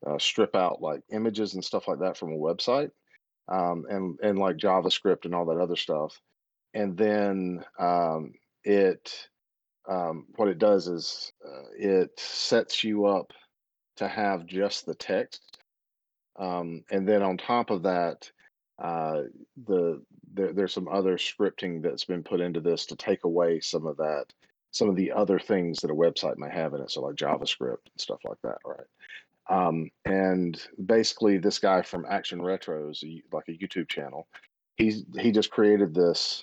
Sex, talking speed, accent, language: male, 175 wpm, American, English